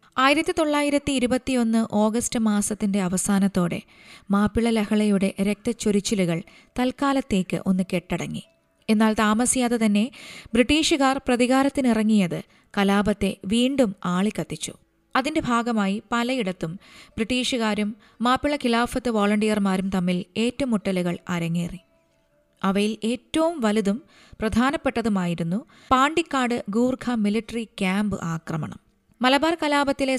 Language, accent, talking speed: Malayalam, native, 80 wpm